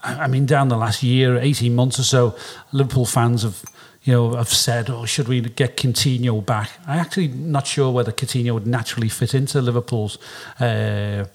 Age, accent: 40-59, British